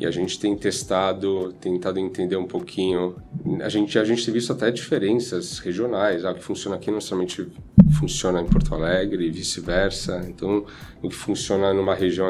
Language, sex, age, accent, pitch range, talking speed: Portuguese, male, 10-29, Brazilian, 90-110 Hz, 175 wpm